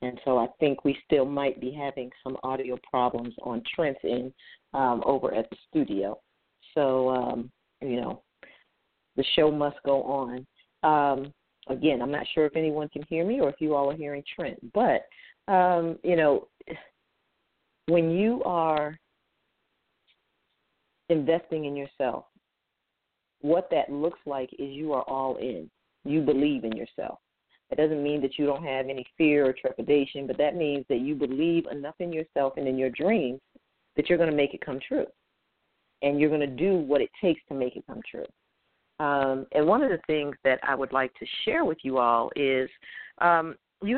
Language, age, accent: English, 40-59, American